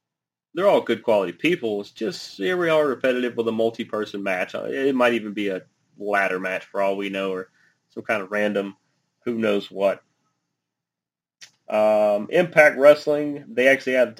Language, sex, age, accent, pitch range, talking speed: English, male, 30-49, American, 105-125 Hz, 170 wpm